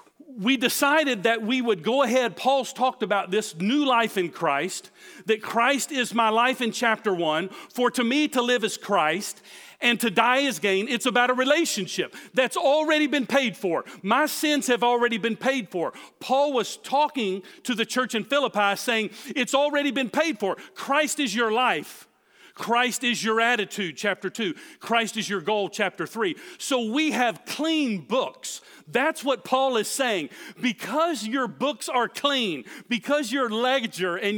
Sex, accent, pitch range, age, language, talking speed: male, American, 220-285 Hz, 40-59, English, 175 wpm